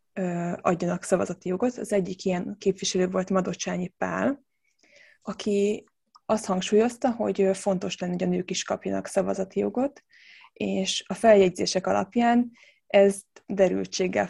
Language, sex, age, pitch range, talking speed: Hungarian, female, 20-39, 180-205 Hz, 120 wpm